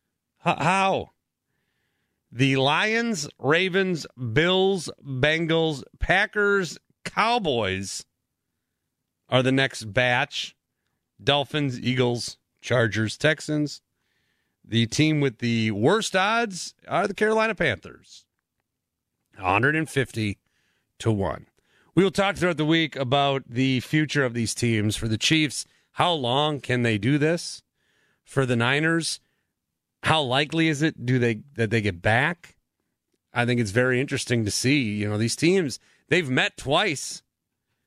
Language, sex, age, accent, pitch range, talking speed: English, male, 40-59, American, 125-165 Hz, 120 wpm